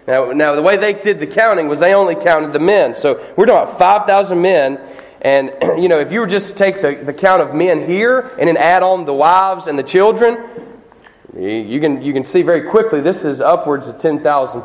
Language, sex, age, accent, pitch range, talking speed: English, male, 30-49, American, 145-205 Hz, 230 wpm